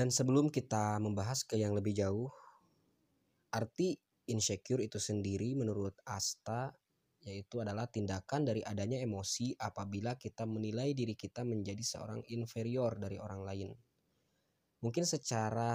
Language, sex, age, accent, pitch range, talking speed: Indonesian, male, 20-39, native, 105-135 Hz, 125 wpm